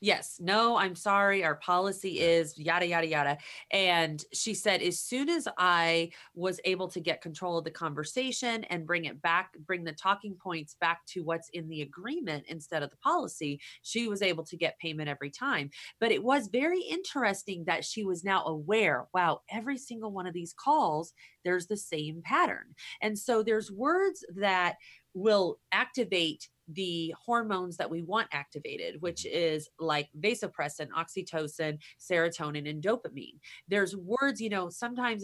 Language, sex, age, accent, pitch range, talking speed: English, female, 30-49, American, 160-210 Hz, 165 wpm